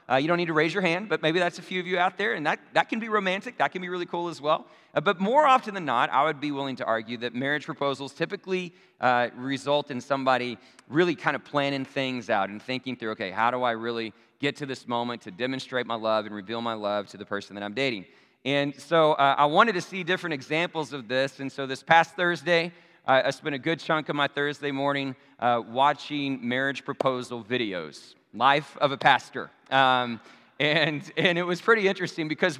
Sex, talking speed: male, 230 wpm